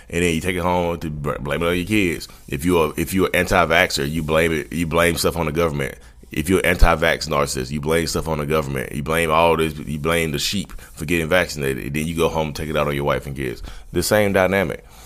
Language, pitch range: English, 70-90 Hz